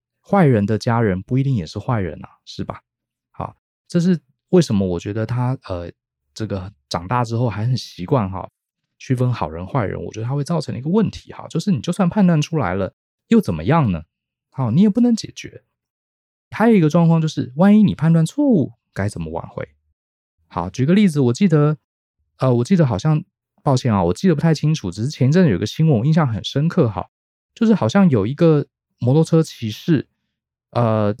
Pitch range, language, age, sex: 110-165 Hz, Chinese, 20-39, male